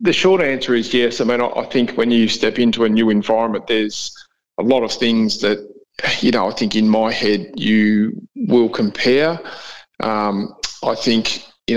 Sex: male